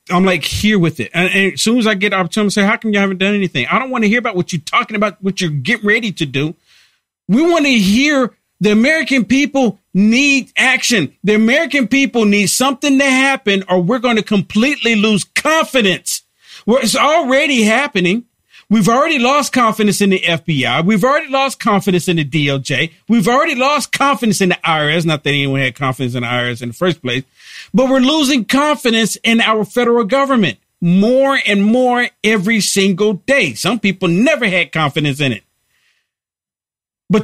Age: 40-59